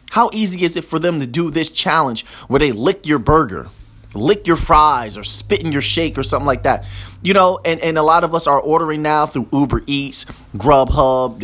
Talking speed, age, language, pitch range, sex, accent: 220 wpm, 30-49, English, 130-190 Hz, male, American